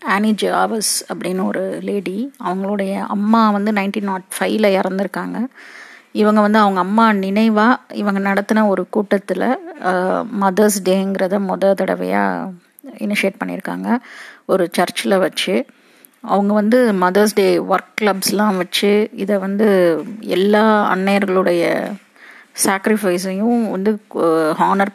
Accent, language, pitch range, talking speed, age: native, Tamil, 185-220 Hz, 105 wpm, 30-49